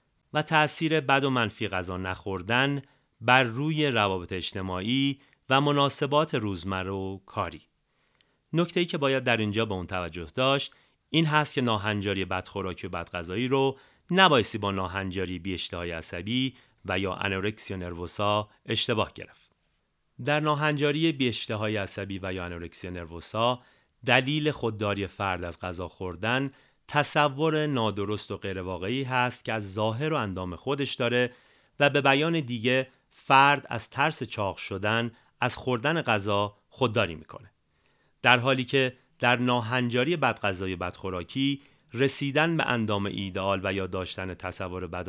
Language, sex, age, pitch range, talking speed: Persian, male, 30-49, 95-135 Hz, 135 wpm